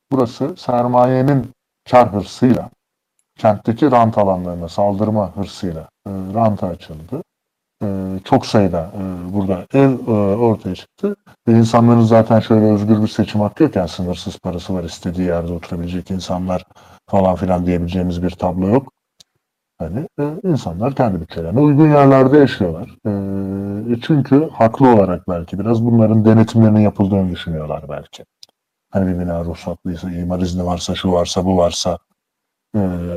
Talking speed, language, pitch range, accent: 130 wpm, Turkish, 90-115 Hz, native